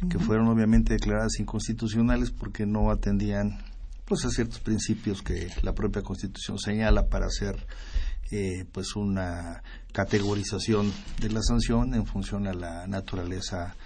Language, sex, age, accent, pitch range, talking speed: Spanish, male, 50-69, Mexican, 100-120 Hz, 135 wpm